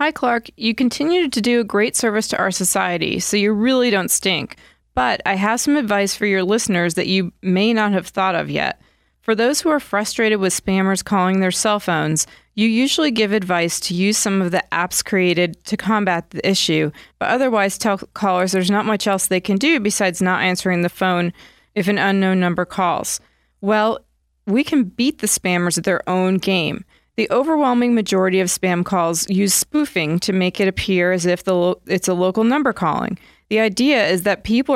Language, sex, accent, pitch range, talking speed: English, female, American, 185-230 Hz, 200 wpm